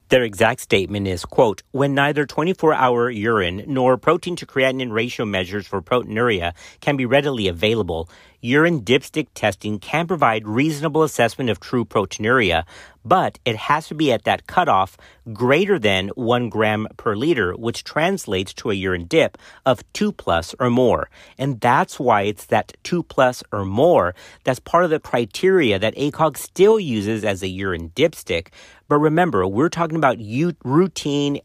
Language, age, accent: English, 40-59, American